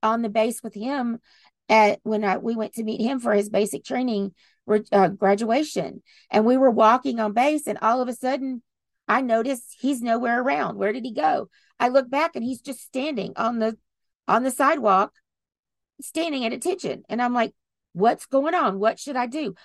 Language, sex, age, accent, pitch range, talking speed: English, female, 40-59, American, 200-260 Hz, 190 wpm